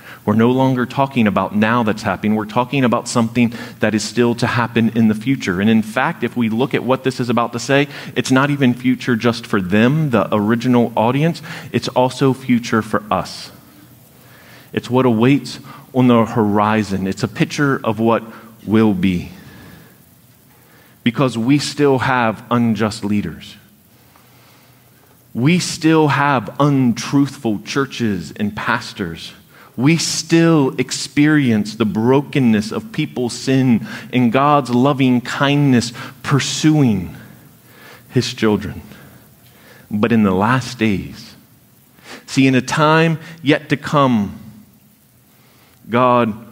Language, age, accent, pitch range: English, 30-49, American, 110-135 Hz